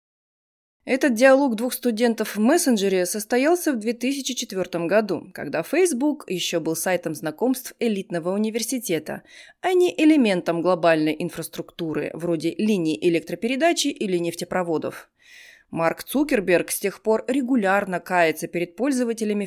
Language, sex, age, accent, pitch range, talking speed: Russian, female, 20-39, native, 175-250 Hz, 115 wpm